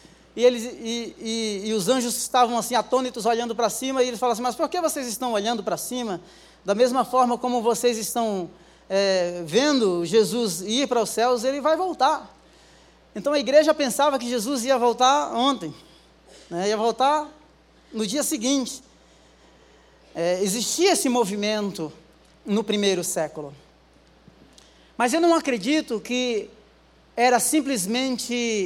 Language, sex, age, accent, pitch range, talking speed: Portuguese, male, 20-39, Brazilian, 200-255 Hz, 140 wpm